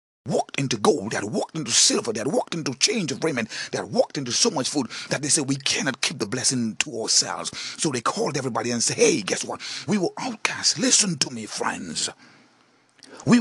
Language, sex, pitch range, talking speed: English, male, 125-185 Hz, 220 wpm